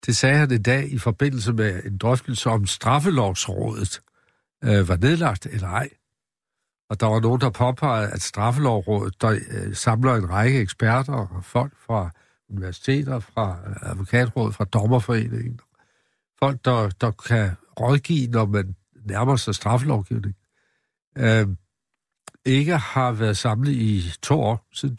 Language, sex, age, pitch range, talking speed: Danish, male, 60-79, 110-130 Hz, 130 wpm